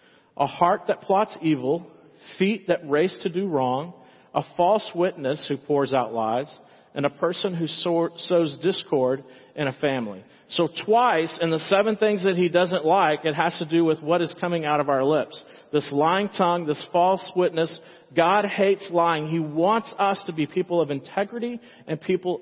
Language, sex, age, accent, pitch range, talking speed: English, male, 40-59, American, 145-185 Hz, 180 wpm